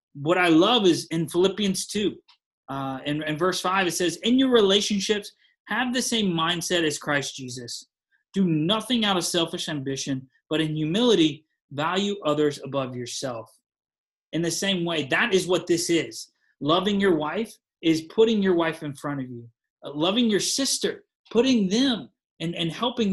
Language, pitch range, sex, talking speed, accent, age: English, 145-195 Hz, male, 170 wpm, American, 30-49